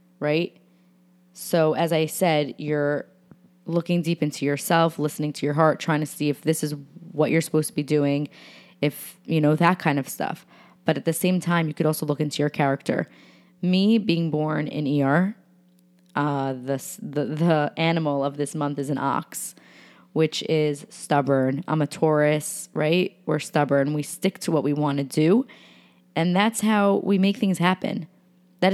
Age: 20-39